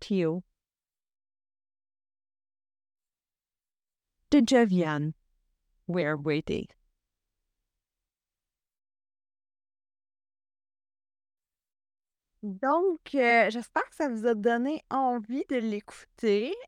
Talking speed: 45 wpm